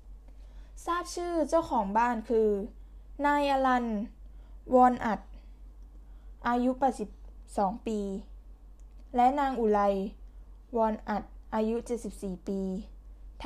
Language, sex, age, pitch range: Thai, female, 10-29, 205-260 Hz